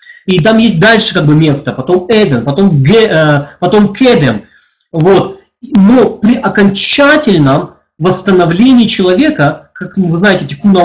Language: Russian